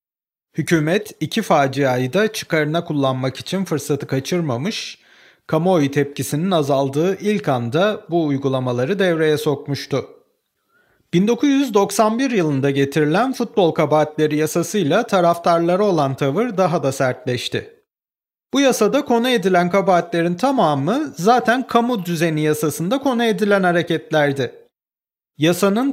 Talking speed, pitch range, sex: 100 wpm, 145-205 Hz, male